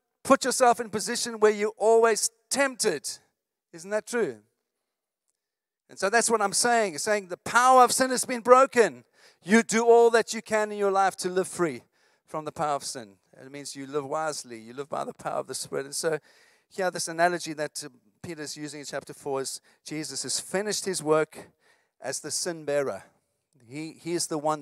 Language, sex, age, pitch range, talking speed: English, male, 50-69, 155-230 Hz, 195 wpm